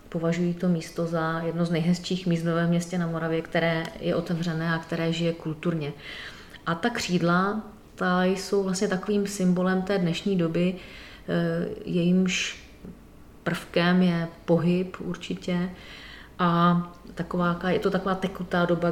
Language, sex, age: Czech, female, 30-49